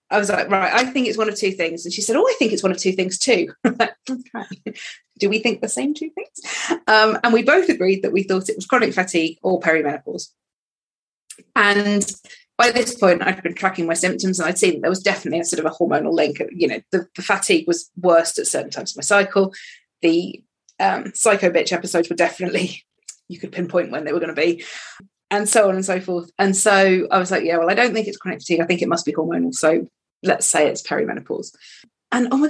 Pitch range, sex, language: 180-230 Hz, female, English